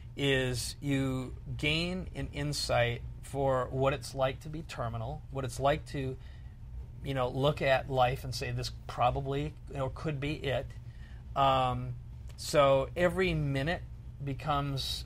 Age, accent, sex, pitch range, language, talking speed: 40-59, American, male, 125-145 Hz, English, 140 wpm